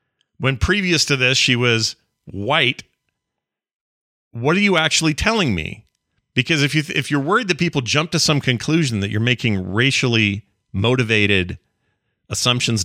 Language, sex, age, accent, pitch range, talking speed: English, male, 40-59, American, 105-160 Hz, 145 wpm